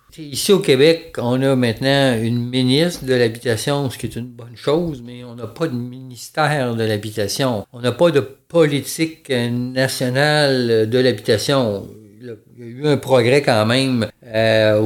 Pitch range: 115-135 Hz